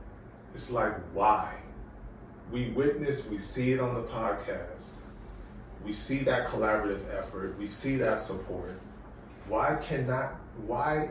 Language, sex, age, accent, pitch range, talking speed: English, male, 30-49, American, 115-160 Hz, 125 wpm